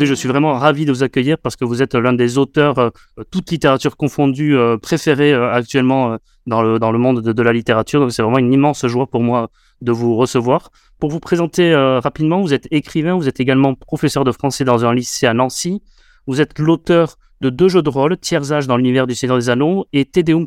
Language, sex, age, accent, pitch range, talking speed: French, male, 30-49, French, 125-155 Hz, 235 wpm